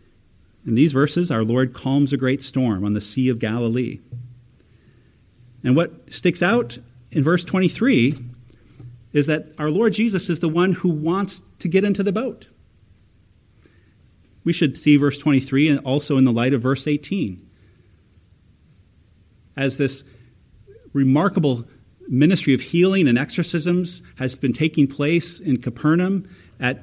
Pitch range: 110-165 Hz